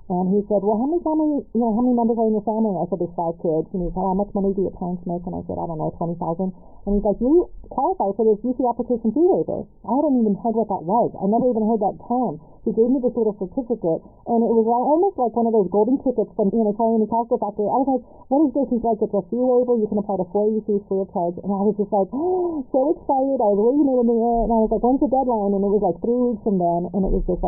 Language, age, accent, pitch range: English, 50-69, American, 175-225 Hz